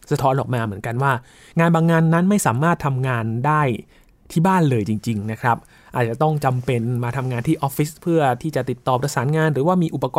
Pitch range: 115-150 Hz